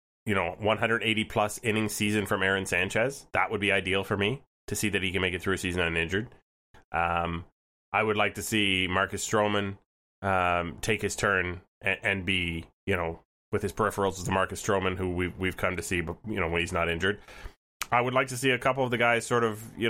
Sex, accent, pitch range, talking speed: male, American, 90-110 Hz, 230 wpm